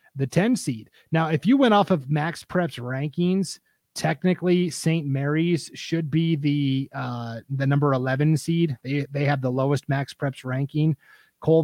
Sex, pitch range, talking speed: male, 135-160 Hz, 165 wpm